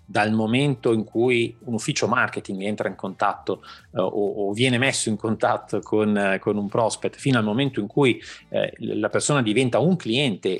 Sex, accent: male, native